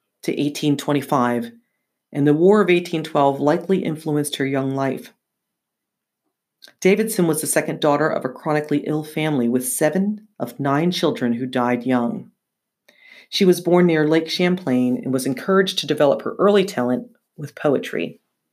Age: 40-59